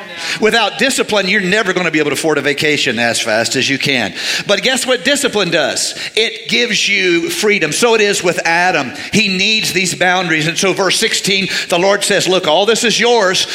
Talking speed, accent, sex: 210 wpm, American, male